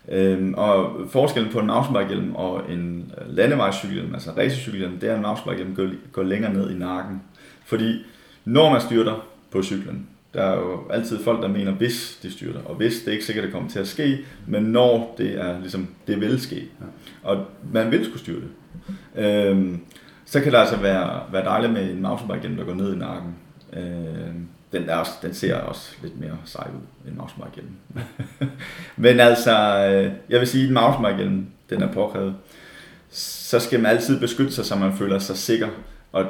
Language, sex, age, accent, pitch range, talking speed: Danish, male, 30-49, native, 95-115 Hz, 185 wpm